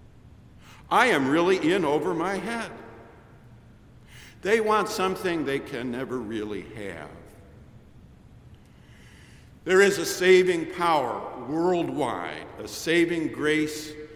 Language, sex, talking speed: English, male, 100 wpm